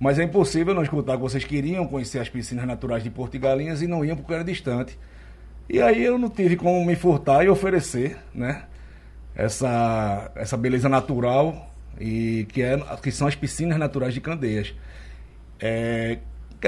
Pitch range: 115-150 Hz